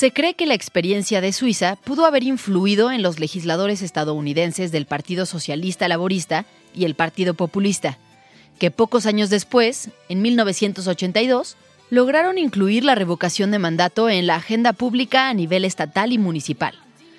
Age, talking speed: 30-49, 150 wpm